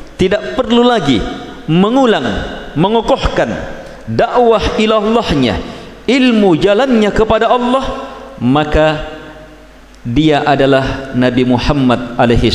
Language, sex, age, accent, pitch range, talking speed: Indonesian, male, 50-69, native, 100-155 Hz, 80 wpm